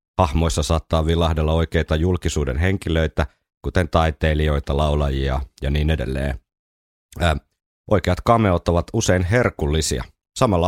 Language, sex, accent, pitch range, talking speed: Finnish, male, native, 75-95 Hz, 100 wpm